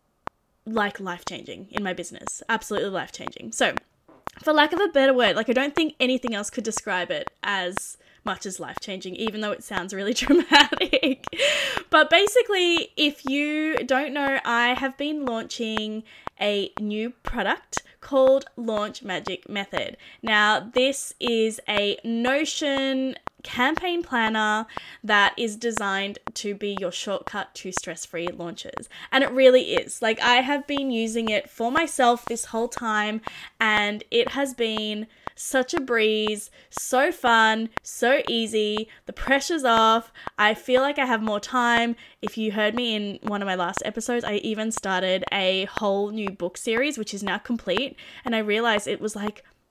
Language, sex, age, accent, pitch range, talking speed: English, female, 10-29, Australian, 210-270 Hz, 160 wpm